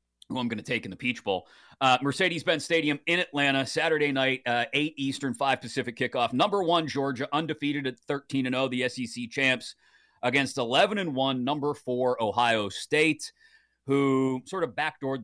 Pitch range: 115-140 Hz